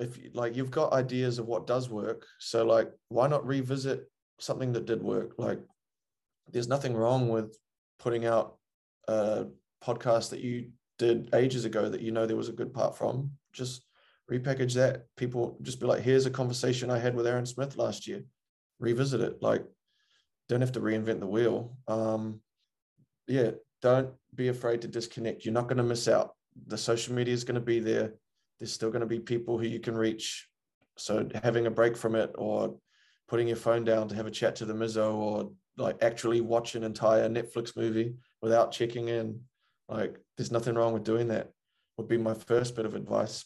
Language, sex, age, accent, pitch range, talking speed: English, male, 20-39, Australian, 115-125 Hz, 195 wpm